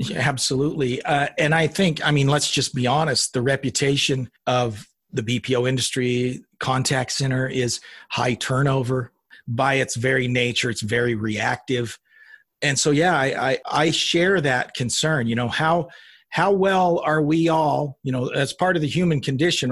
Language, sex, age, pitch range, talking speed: English, male, 40-59, 125-160 Hz, 165 wpm